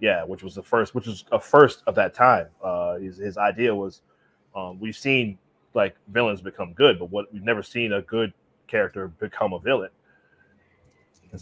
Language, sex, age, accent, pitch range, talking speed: English, male, 20-39, American, 90-110 Hz, 190 wpm